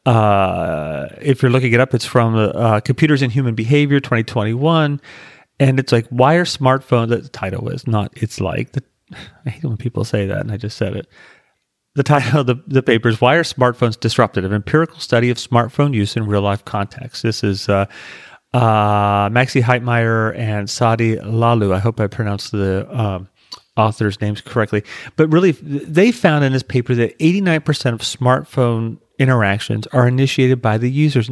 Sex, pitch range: male, 110-135 Hz